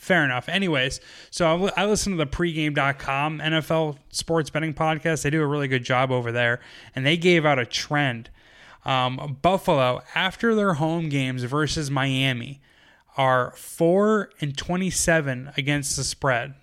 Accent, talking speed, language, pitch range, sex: American, 150 wpm, English, 130-160 Hz, male